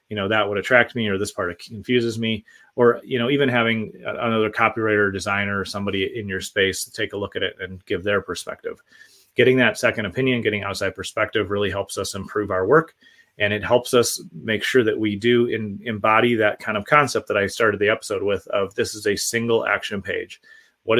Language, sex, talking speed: English, male, 215 wpm